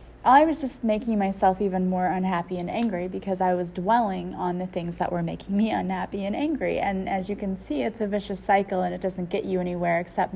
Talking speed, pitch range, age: 230 wpm, 175-205 Hz, 30-49